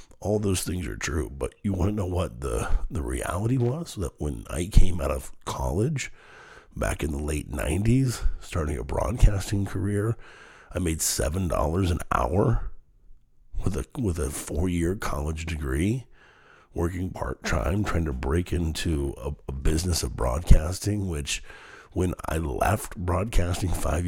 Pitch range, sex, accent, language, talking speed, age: 75-105 Hz, male, American, English, 150 wpm, 50-69